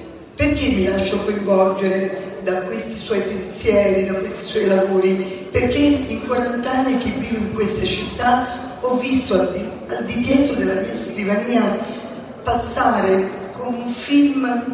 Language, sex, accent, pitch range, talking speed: Italian, female, native, 195-245 Hz, 135 wpm